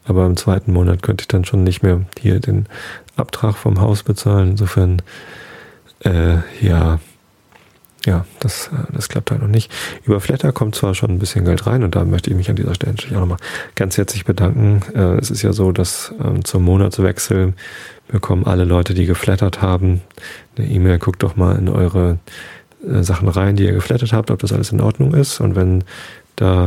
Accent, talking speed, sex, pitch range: German, 200 wpm, male, 90-110 Hz